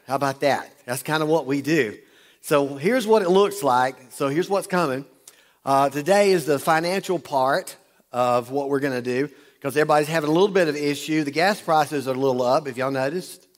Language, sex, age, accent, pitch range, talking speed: English, male, 50-69, American, 130-170 Hz, 215 wpm